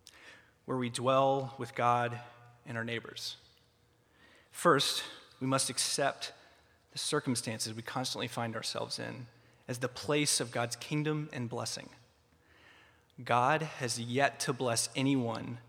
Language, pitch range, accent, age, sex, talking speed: English, 115-135 Hz, American, 30-49, male, 125 wpm